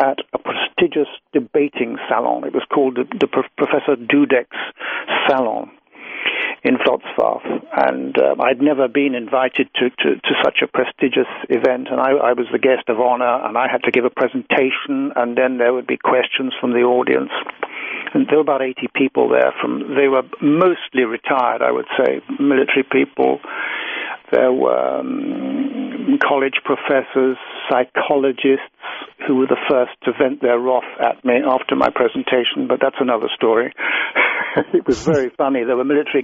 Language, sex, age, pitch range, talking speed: English, male, 60-79, 130-185 Hz, 160 wpm